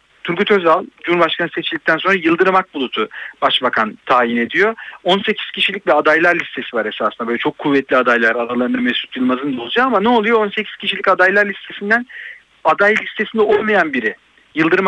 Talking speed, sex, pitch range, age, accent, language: 155 wpm, male, 150-205 Hz, 50-69, native, Turkish